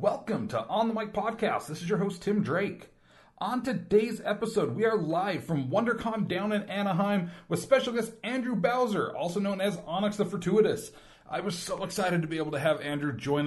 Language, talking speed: English, 200 wpm